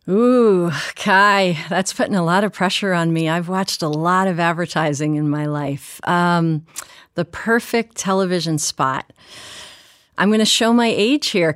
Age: 40-59